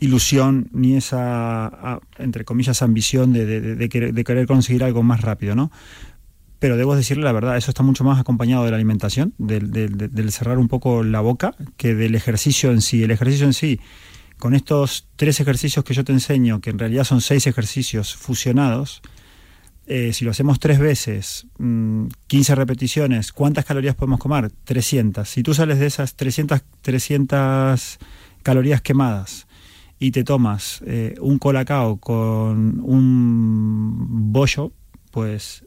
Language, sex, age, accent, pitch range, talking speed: Spanish, male, 30-49, Argentinian, 115-140 Hz, 150 wpm